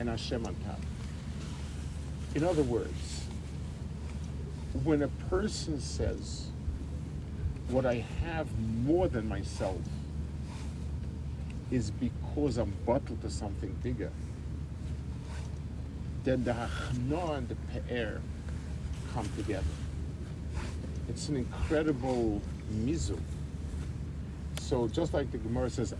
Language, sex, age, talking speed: English, male, 50-69, 95 wpm